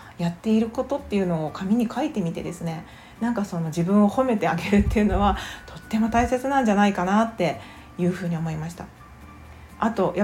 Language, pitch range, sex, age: Japanese, 165-235 Hz, female, 40-59